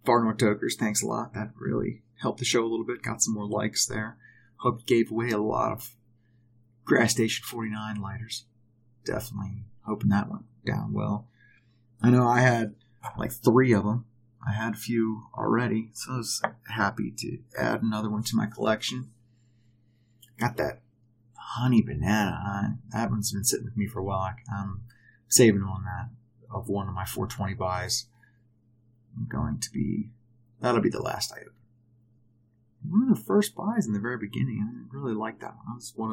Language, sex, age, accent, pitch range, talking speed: English, male, 30-49, American, 110-120 Hz, 180 wpm